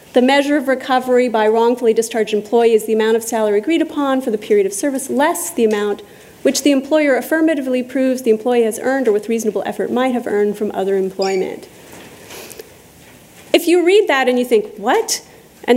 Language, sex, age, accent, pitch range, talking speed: English, female, 30-49, American, 220-285 Hz, 195 wpm